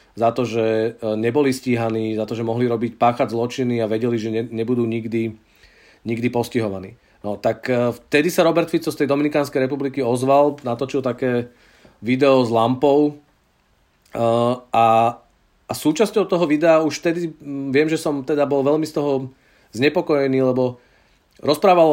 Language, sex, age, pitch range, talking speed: Czech, male, 40-59, 125-150 Hz, 145 wpm